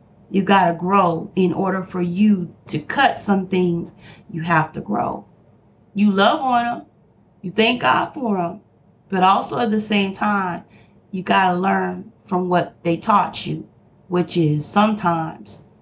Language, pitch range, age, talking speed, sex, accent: English, 185-245 Hz, 40-59, 165 wpm, female, American